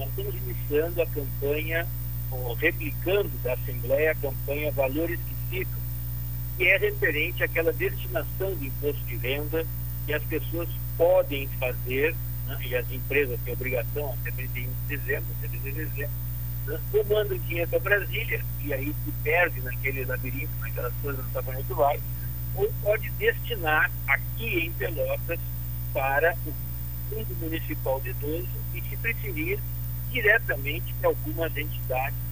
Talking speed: 140 wpm